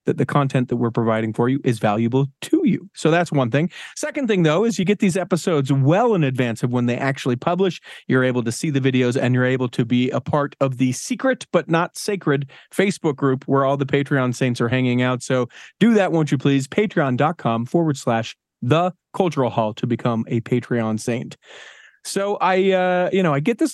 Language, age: English, 40-59